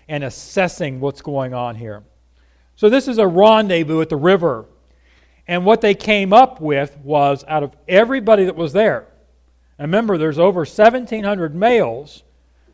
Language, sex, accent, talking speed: English, male, American, 150 wpm